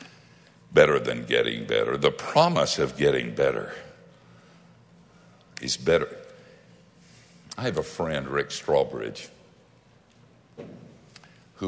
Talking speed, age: 90 wpm, 60-79